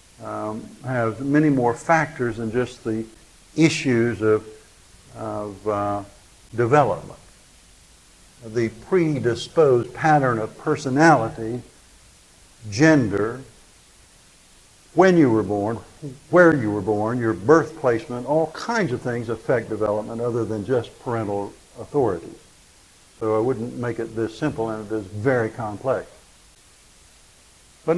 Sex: male